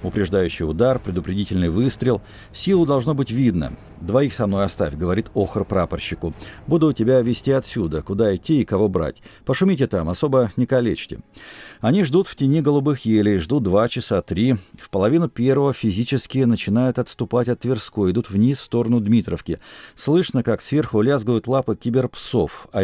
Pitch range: 105-135 Hz